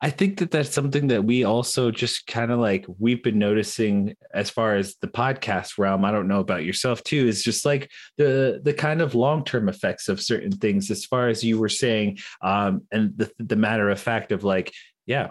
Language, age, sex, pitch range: English, 20-39, male, 100-125 Hz